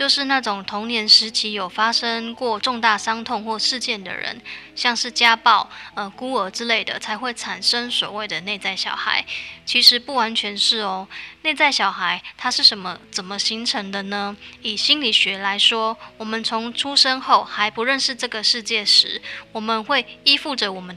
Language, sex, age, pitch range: Chinese, female, 10-29, 210-255 Hz